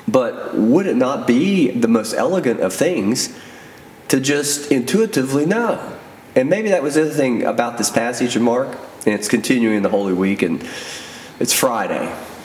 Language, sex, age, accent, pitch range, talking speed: English, male, 40-59, American, 105-145 Hz, 170 wpm